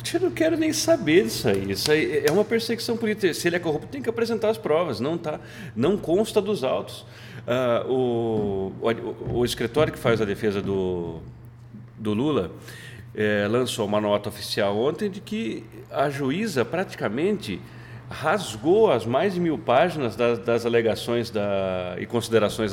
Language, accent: Portuguese, Brazilian